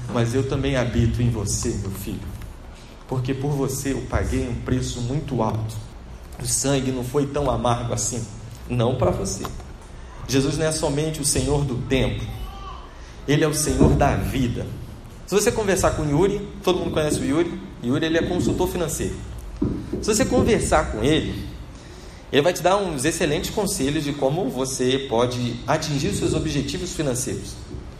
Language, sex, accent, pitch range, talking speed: Portuguese, male, Brazilian, 100-135 Hz, 165 wpm